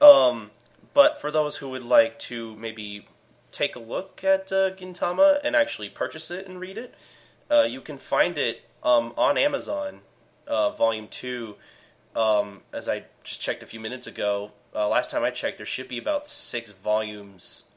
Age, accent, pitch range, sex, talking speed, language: 20-39, American, 115-185 Hz, male, 180 wpm, English